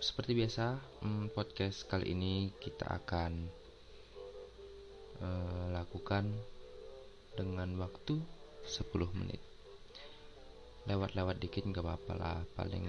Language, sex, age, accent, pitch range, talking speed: Indonesian, male, 20-39, native, 100-130 Hz, 90 wpm